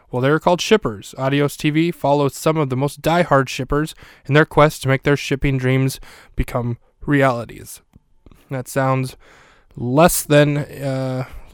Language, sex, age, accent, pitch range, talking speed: English, male, 20-39, American, 120-140 Hz, 145 wpm